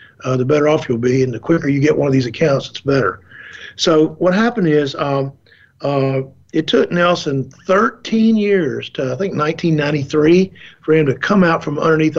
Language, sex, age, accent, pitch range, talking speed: English, male, 50-69, American, 140-185 Hz, 190 wpm